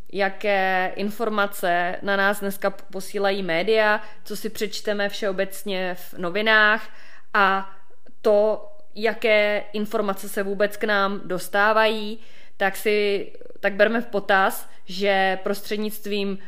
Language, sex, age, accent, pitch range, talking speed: Czech, female, 20-39, native, 190-215 Hz, 110 wpm